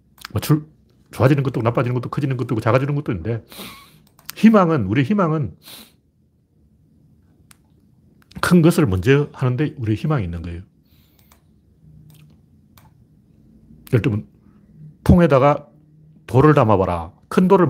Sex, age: male, 40-59